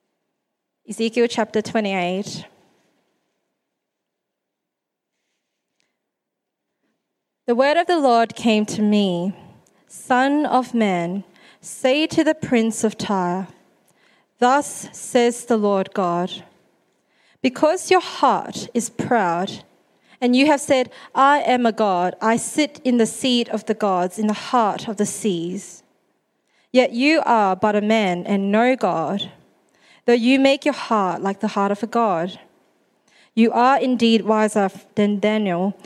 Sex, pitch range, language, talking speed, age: female, 200-245 Hz, English, 130 wpm, 20-39